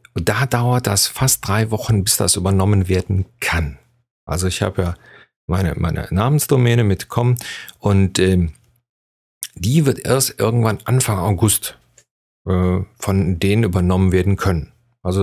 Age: 40-59